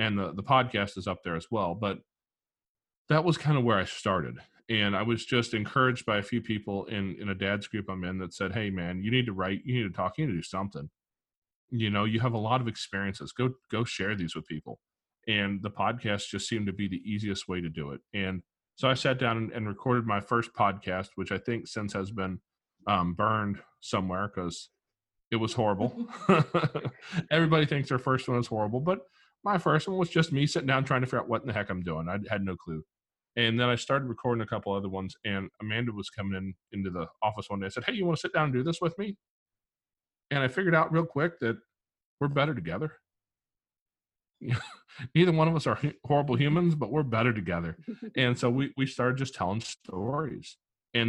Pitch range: 100-130 Hz